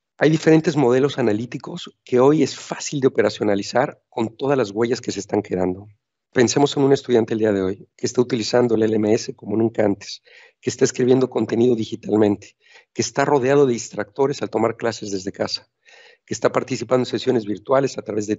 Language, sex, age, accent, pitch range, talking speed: Spanish, male, 50-69, Mexican, 110-140 Hz, 190 wpm